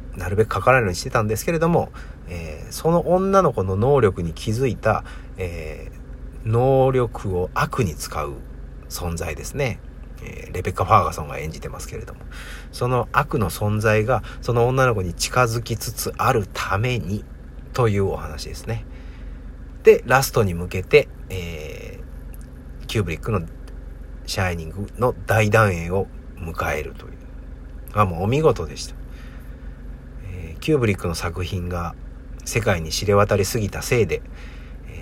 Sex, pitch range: male, 65-110 Hz